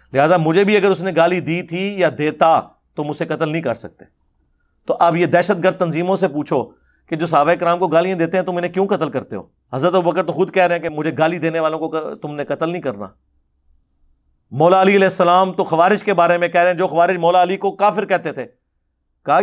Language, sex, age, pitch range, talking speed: Urdu, male, 40-59, 150-200 Hz, 245 wpm